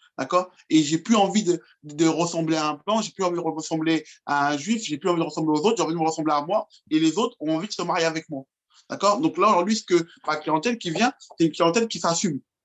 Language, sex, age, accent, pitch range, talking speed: French, male, 20-39, French, 155-210 Hz, 280 wpm